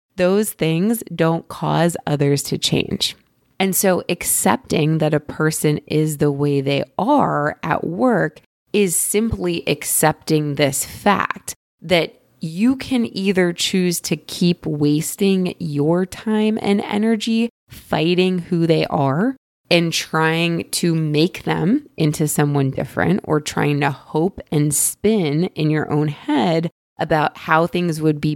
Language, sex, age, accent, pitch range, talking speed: English, female, 20-39, American, 150-195 Hz, 135 wpm